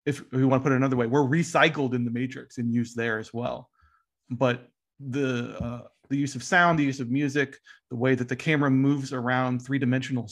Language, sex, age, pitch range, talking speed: English, male, 30-49, 125-140 Hz, 215 wpm